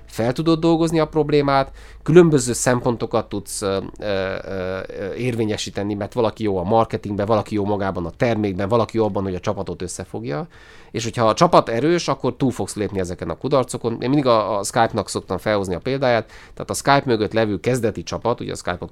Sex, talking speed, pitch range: male, 180 wpm, 95-125 Hz